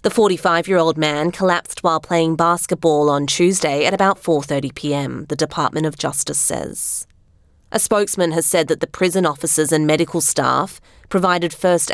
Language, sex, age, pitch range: English, female, 30-49, 160-195 Hz